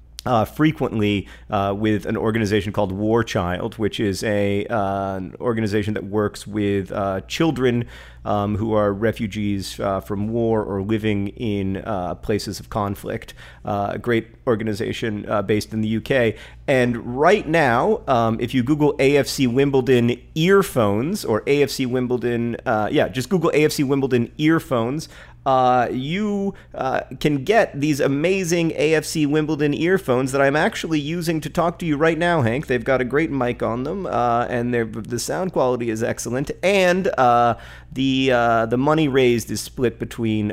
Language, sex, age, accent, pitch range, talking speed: English, male, 40-59, American, 110-135 Hz, 160 wpm